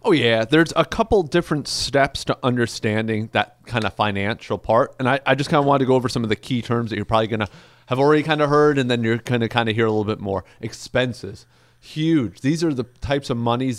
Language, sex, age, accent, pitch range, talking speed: English, male, 30-49, American, 110-135 Hz, 255 wpm